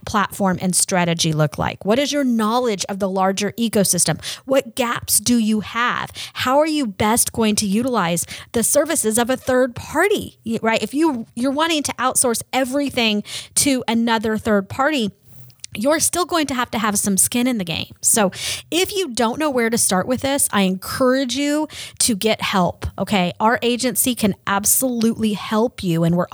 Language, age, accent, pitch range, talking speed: English, 30-49, American, 190-255 Hz, 180 wpm